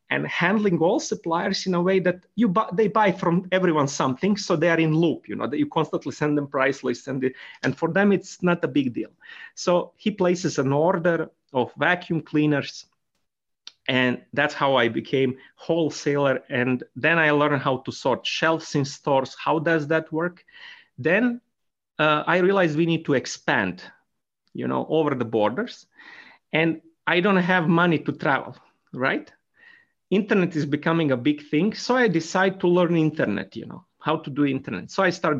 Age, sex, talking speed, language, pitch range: 30-49, male, 185 wpm, English, 135-180 Hz